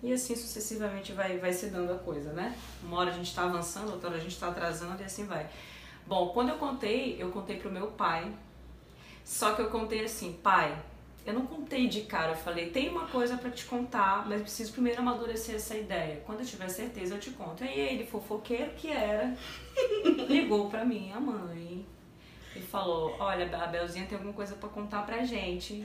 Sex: female